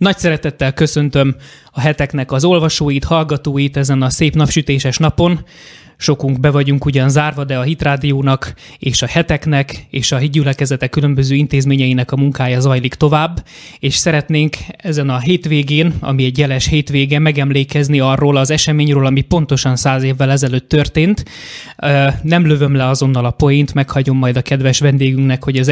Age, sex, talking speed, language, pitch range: 20-39, male, 150 wpm, Hungarian, 135-155 Hz